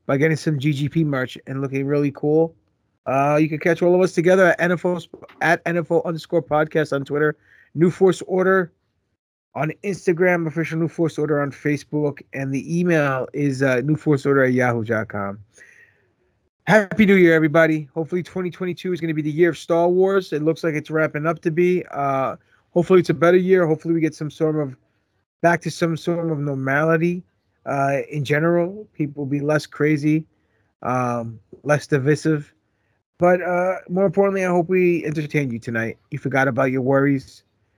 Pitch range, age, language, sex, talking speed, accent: 135-170 Hz, 30-49, English, male, 175 wpm, American